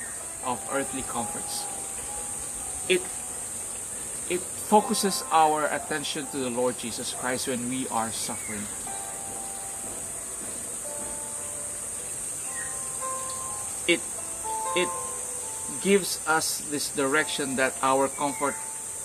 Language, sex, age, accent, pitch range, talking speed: English, male, 50-69, Filipino, 115-160 Hz, 80 wpm